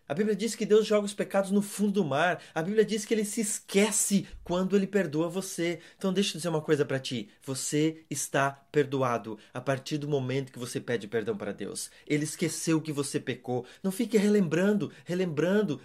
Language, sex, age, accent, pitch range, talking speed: Portuguese, male, 20-39, Brazilian, 135-190 Hz, 200 wpm